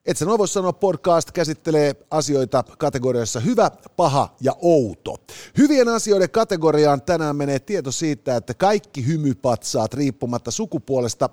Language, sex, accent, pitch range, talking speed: Finnish, male, native, 125-190 Hz, 125 wpm